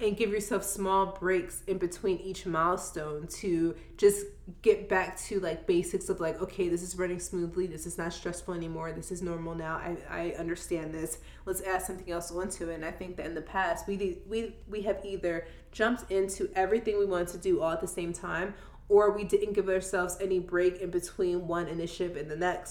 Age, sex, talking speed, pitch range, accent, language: 20-39, female, 210 wpm, 170-195 Hz, American, English